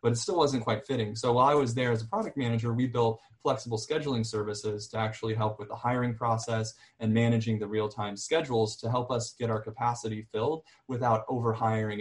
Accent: American